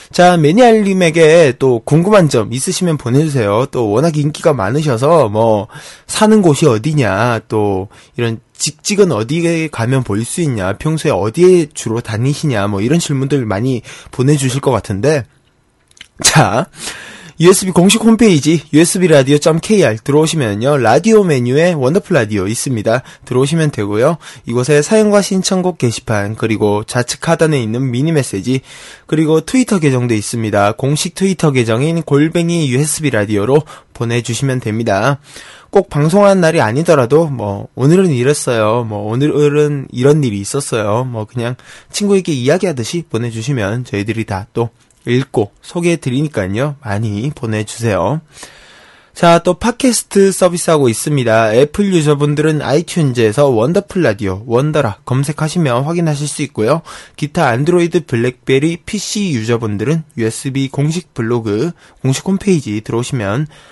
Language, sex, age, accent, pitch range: Korean, male, 20-39, native, 115-165 Hz